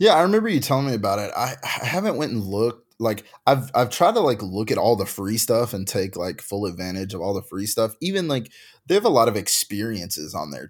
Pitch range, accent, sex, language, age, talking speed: 100-125 Hz, American, male, English, 20-39, 260 wpm